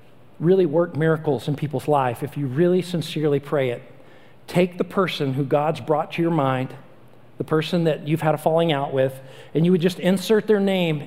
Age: 50-69